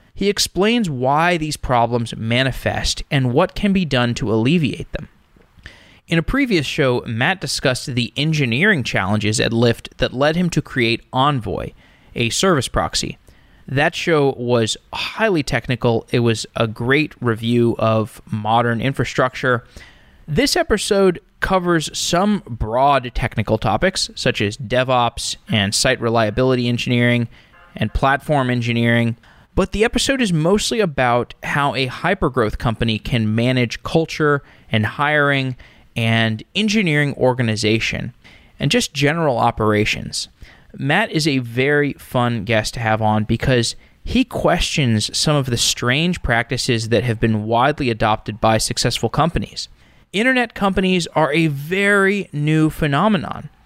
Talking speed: 130 wpm